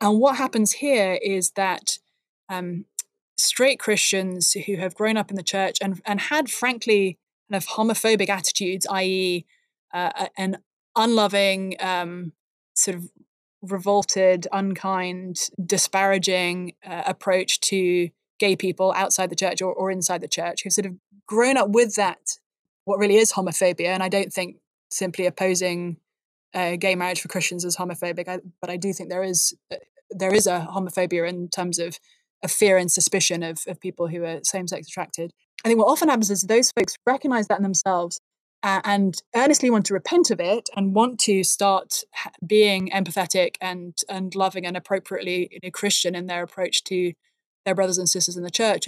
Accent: British